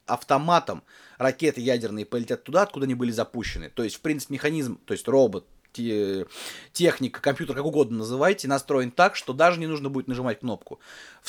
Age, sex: 30-49, male